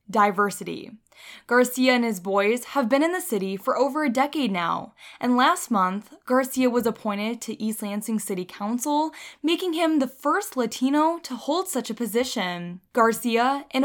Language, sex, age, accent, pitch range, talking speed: English, female, 10-29, American, 205-280 Hz, 165 wpm